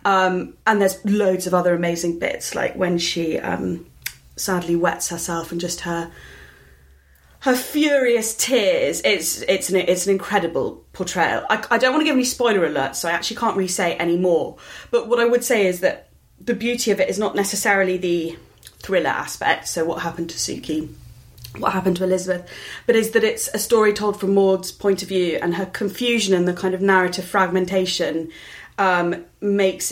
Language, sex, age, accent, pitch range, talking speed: English, female, 30-49, British, 175-205 Hz, 190 wpm